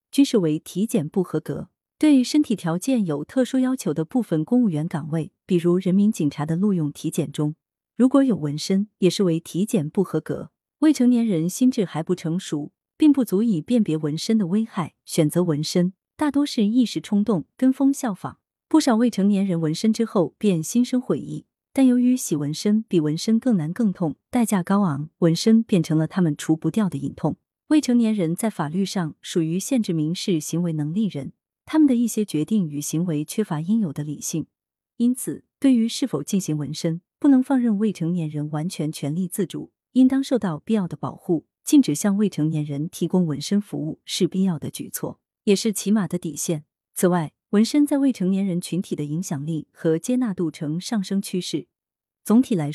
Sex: female